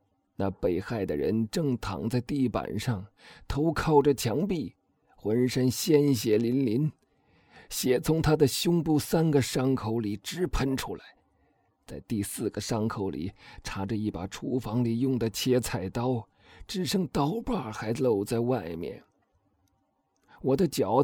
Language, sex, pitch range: Chinese, male, 105-150 Hz